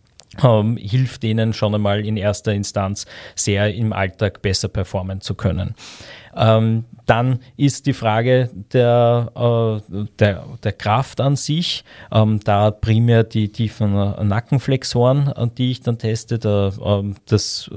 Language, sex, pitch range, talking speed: German, male, 100-115 Hz, 130 wpm